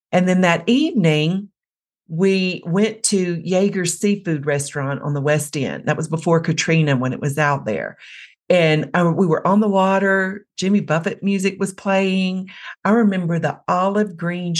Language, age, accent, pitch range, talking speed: English, 50-69, American, 150-195 Hz, 160 wpm